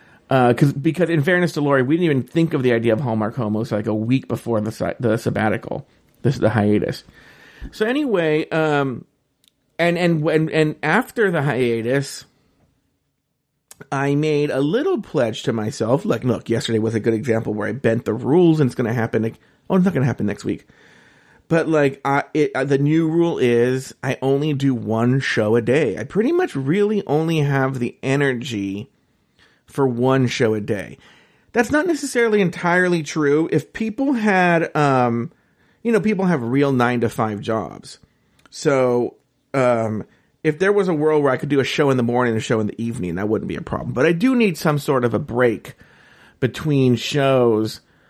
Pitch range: 115-160 Hz